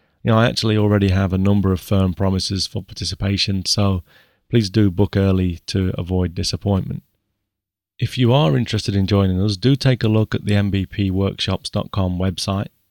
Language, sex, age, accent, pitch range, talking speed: English, male, 30-49, British, 95-115 Hz, 160 wpm